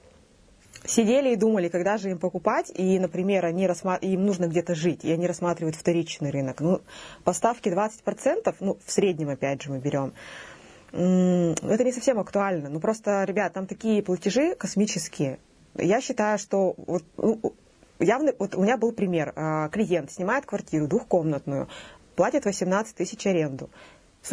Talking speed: 150 wpm